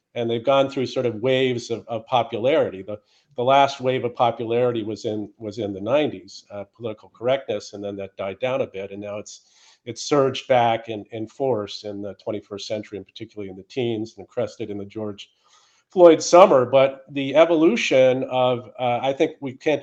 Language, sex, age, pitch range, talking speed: English, male, 50-69, 105-130 Hz, 200 wpm